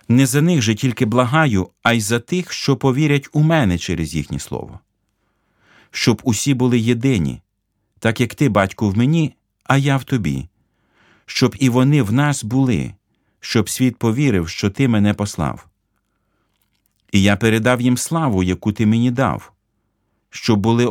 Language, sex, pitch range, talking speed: Ukrainian, male, 100-125 Hz, 160 wpm